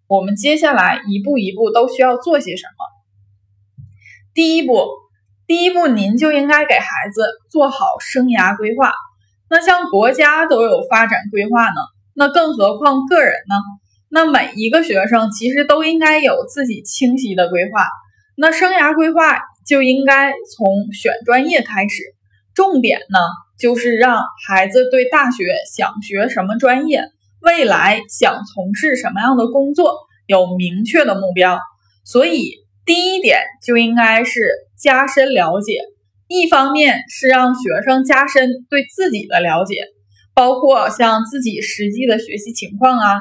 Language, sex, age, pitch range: Chinese, female, 10-29, 205-295 Hz